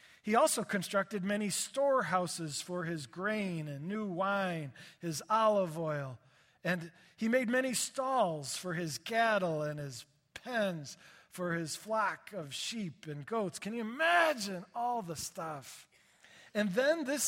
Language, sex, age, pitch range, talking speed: English, male, 40-59, 170-225 Hz, 140 wpm